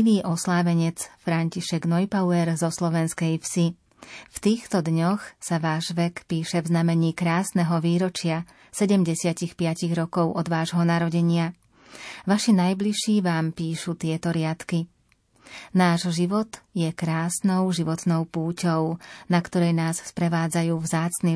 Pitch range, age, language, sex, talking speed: 165-185 Hz, 30-49, Slovak, female, 110 wpm